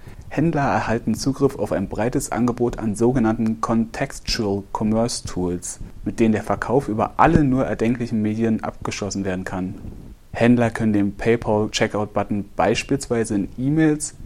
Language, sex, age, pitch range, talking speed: German, male, 30-49, 105-125 Hz, 120 wpm